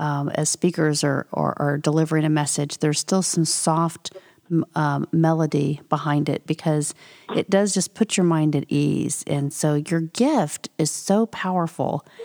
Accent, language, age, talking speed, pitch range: American, English, 40-59, 160 wpm, 155-190 Hz